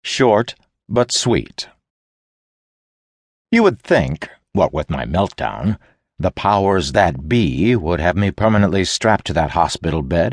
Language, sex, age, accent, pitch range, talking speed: English, male, 60-79, American, 85-110 Hz, 135 wpm